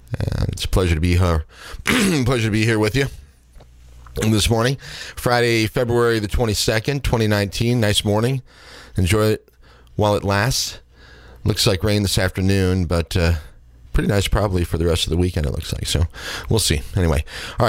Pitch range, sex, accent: 90-110 Hz, male, American